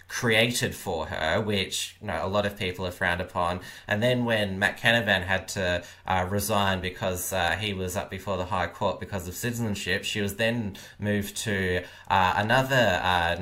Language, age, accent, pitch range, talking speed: English, 20-39, Australian, 95-110 Hz, 190 wpm